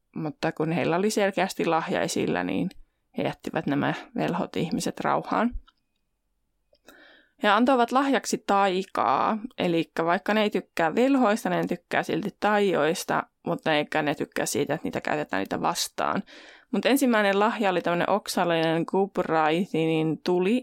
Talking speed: 135 wpm